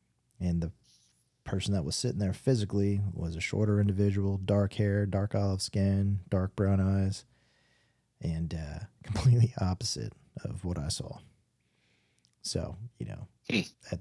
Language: English